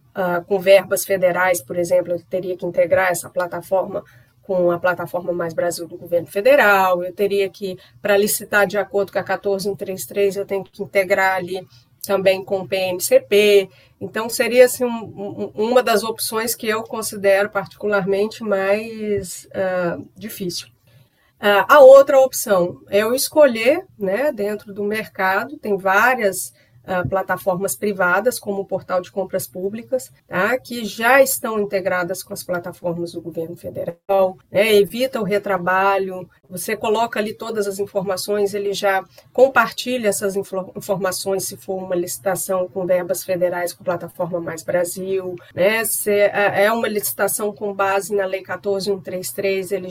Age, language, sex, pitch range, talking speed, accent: 30-49, Portuguese, female, 185-205 Hz, 150 wpm, Brazilian